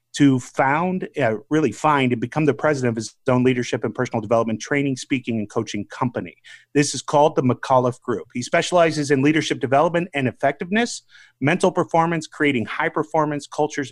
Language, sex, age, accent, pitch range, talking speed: English, male, 30-49, American, 125-155 Hz, 175 wpm